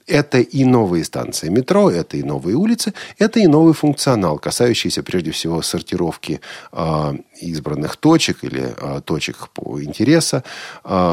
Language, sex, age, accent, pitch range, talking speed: Russian, male, 40-59, native, 90-140 Hz, 140 wpm